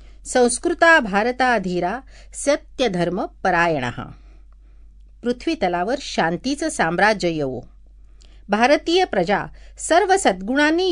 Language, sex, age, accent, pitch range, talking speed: Marathi, female, 50-69, native, 170-260 Hz, 90 wpm